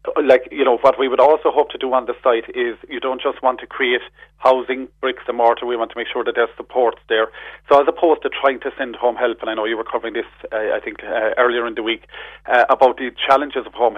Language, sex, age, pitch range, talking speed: English, male, 30-49, 115-145 Hz, 270 wpm